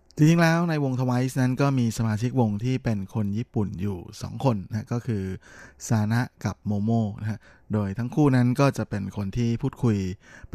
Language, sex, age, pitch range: Thai, male, 20-39, 100-120 Hz